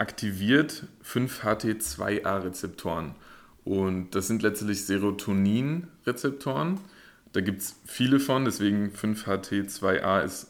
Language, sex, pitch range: German, male, 95-110 Hz